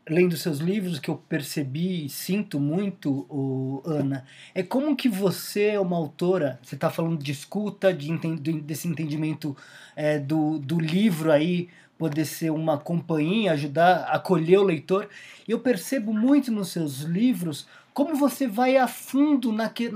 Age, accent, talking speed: 20-39, Brazilian, 160 wpm